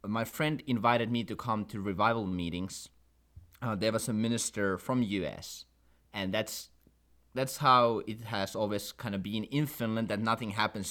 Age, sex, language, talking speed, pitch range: 20-39, male, English, 170 wpm, 105-135 Hz